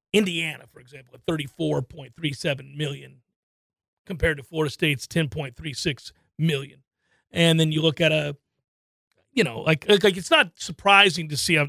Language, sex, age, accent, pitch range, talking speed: English, male, 40-59, American, 160-245 Hz, 180 wpm